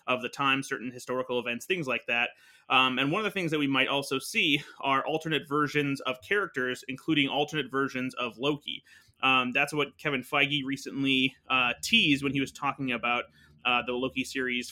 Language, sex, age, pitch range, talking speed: English, male, 20-39, 125-145 Hz, 190 wpm